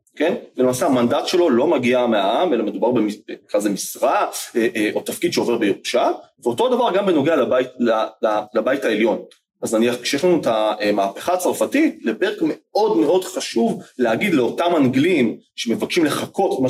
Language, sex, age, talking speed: Hebrew, male, 30-49, 150 wpm